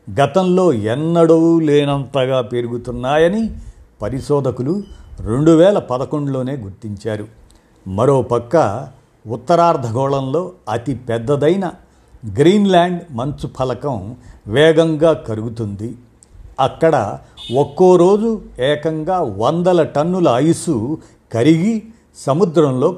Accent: native